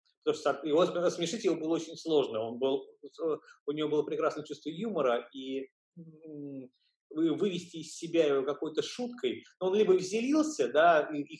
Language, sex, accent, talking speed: Russian, male, native, 160 wpm